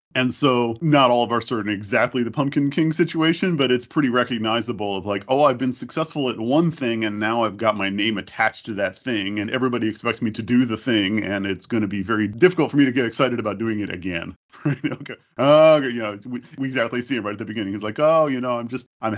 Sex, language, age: male, English, 40-59